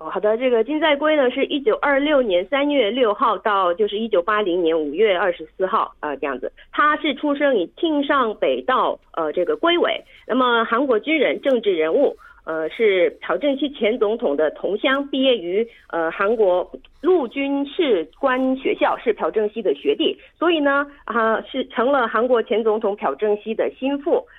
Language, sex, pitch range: Korean, female, 215-310 Hz